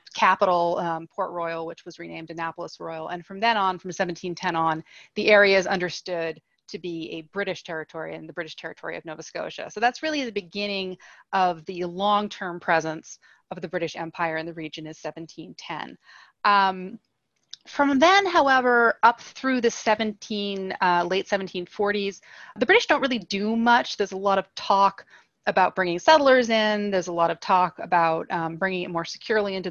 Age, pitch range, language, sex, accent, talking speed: 30-49, 170-205 Hz, English, female, American, 180 wpm